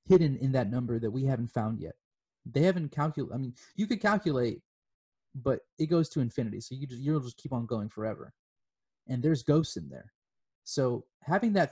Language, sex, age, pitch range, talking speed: English, male, 20-39, 125-160 Hz, 200 wpm